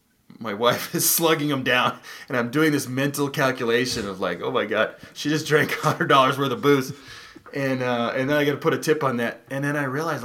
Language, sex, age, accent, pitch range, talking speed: English, male, 20-39, American, 100-135 Hz, 240 wpm